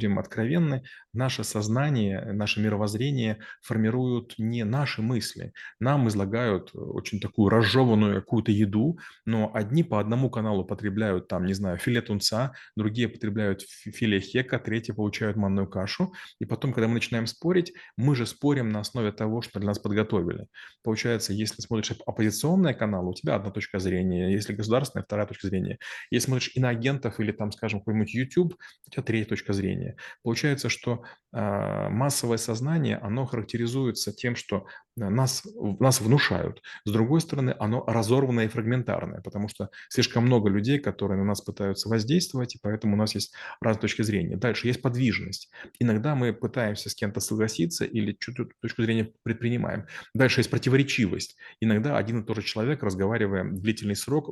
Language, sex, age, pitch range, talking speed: Russian, male, 20-39, 105-125 Hz, 160 wpm